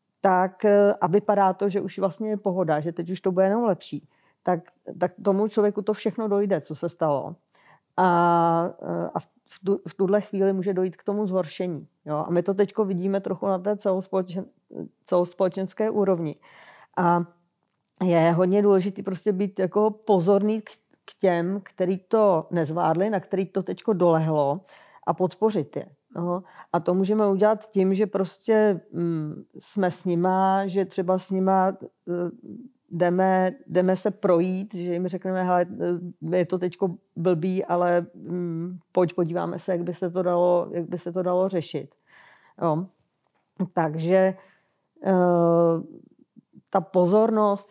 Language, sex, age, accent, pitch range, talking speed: Czech, female, 40-59, native, 175-195 Hz, 145 wpm